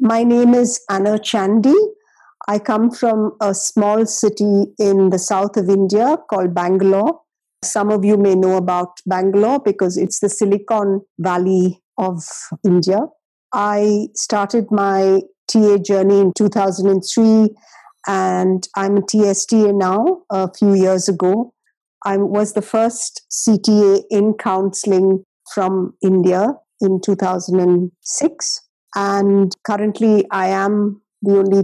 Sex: female